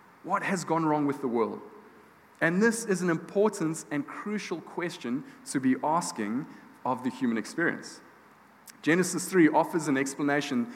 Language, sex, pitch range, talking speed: English, male, 135-190 Hz, 150 wpm